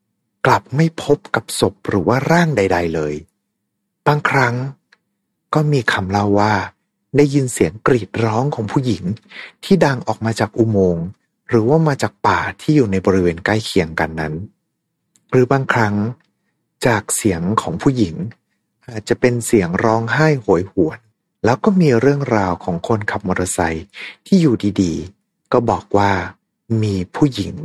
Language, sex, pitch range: Thai, male, 90-125 Hz